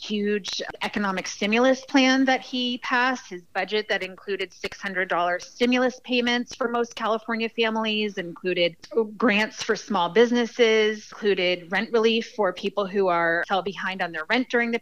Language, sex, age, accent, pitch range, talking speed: English, female, 30-49, American, 190-240 Hz, 150 wpm